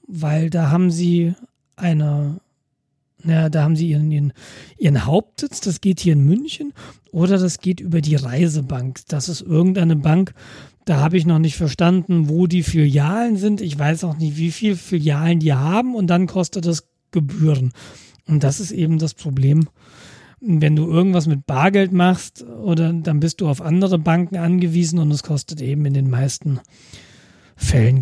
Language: German